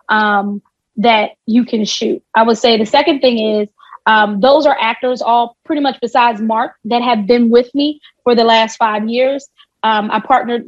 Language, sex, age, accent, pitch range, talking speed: English, female, 20-39, American, 220-250 Hz, 190 wpm